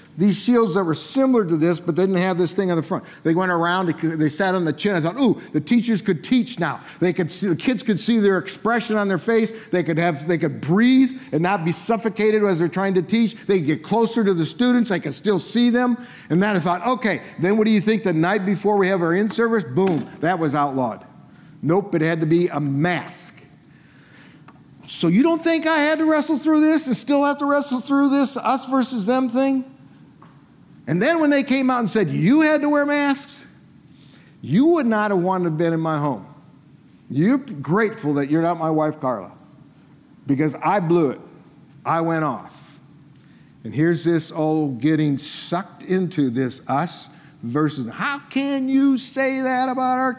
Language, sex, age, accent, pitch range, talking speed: English, male, 50-69, American, 155-240 Hz, 210 wpm